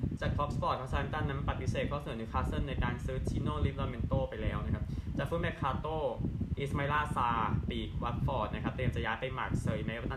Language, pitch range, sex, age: Thai, 105-135 Hz, male, 20-39